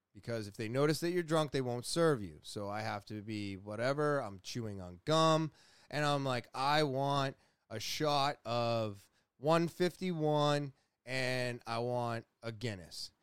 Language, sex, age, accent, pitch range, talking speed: English, male, 20-39, American, 115-150 Hz, 160 wpm